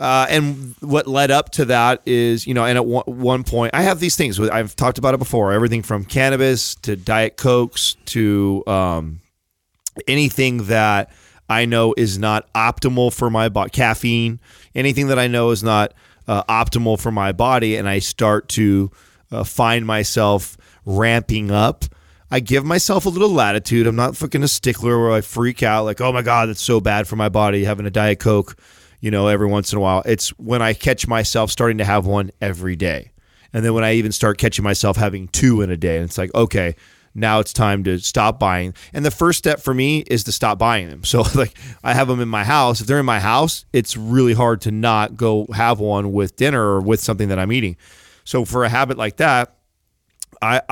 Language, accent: English, American